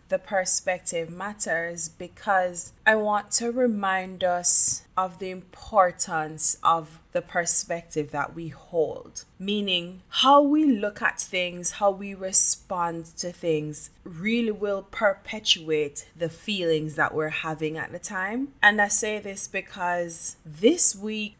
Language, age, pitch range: English, 20-39, 160-195 Hz